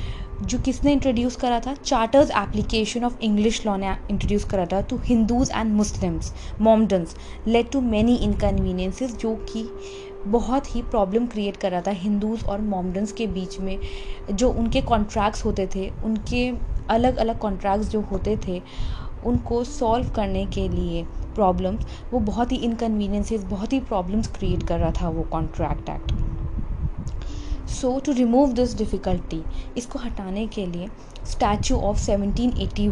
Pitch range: 195-240 Hz